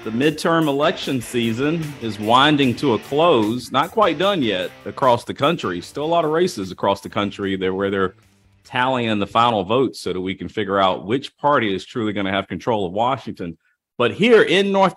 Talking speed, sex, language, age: 205 wpm, male, English, 40-59